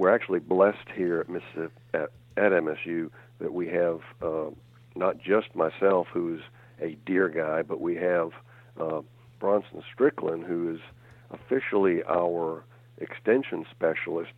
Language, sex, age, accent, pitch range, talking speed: English, male, 60-79, American, 85-120 Hz, 130 wpm